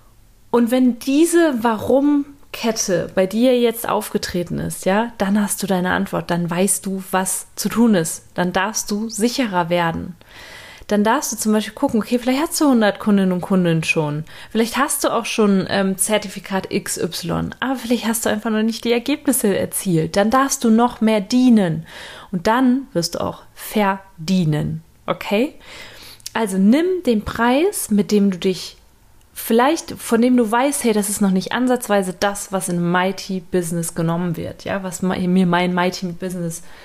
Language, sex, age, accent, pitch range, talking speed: German, female, 30-49, German, 185-235 Hz, 170 wpm